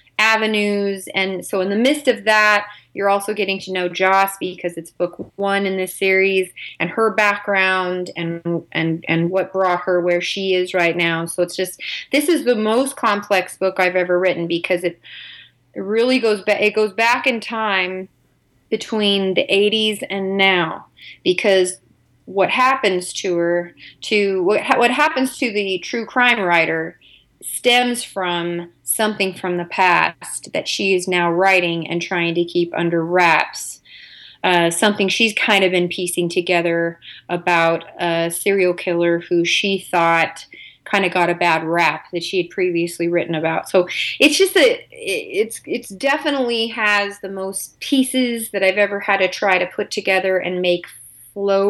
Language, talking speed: English, 165 wpm